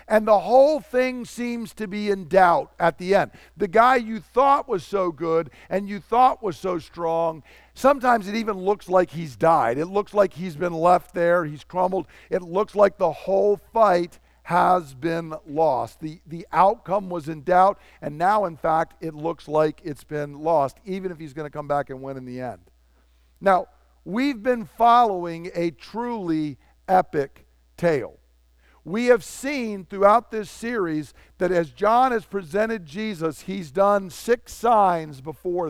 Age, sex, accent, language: 50-69, male, American, English